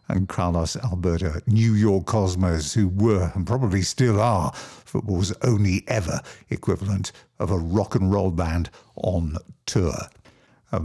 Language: English